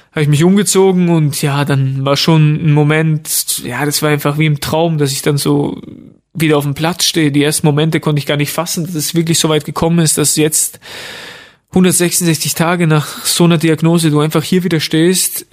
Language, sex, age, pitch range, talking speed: German, male, 20-39, 150-165 Hz, 215 wpm